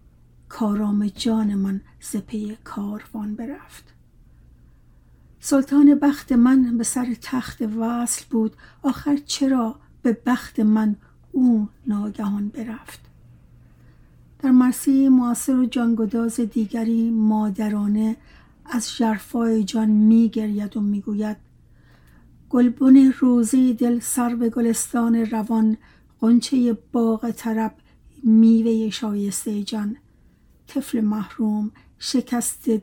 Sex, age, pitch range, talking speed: female, 60-79, 215-245 Hz, 90 wpm